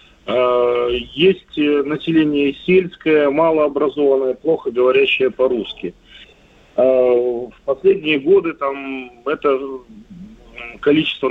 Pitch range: 125-165 Hz